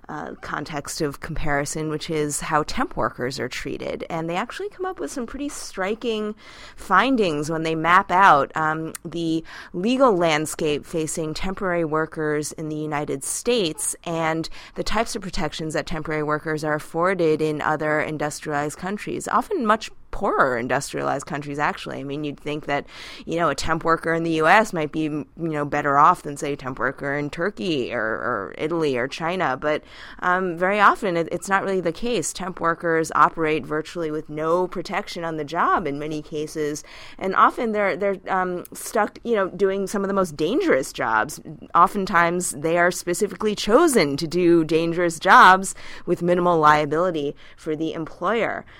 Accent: American